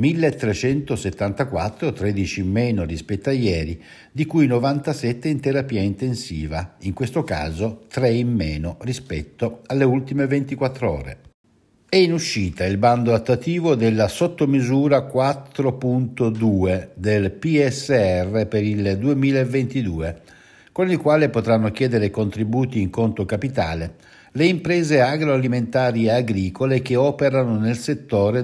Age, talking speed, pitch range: 60-79, 120 wpm, 100-135 Hz